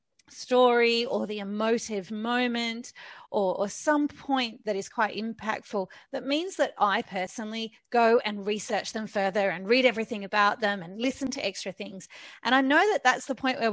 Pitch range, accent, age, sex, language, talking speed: 200-250 Hz, Australian, 30-49, female, English, 180 wpm